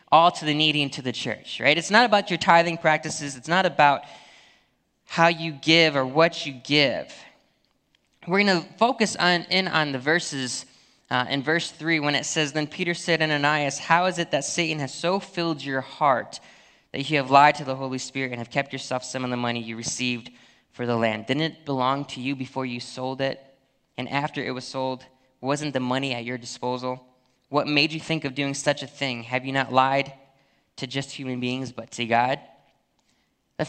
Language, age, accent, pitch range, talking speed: English, 20-39, American, 130-175 Hz, 205 wpm